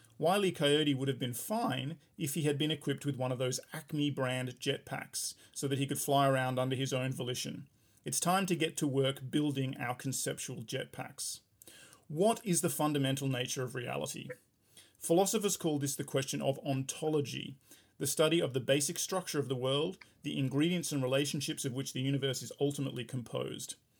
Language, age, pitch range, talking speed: English, 40-59, 135-155 Hz, 180 wpm